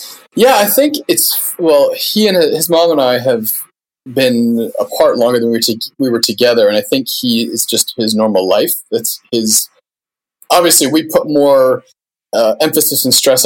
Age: 20-39